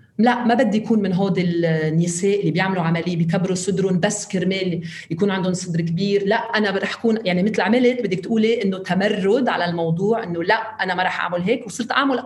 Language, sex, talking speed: Arabic, female, 195 wpm